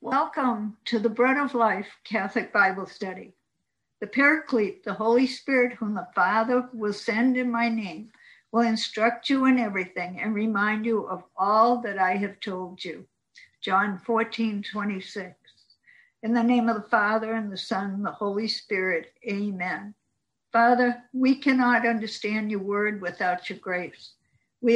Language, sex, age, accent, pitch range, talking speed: English, female, 60-79, American, 190-235 Hz, 155 wpm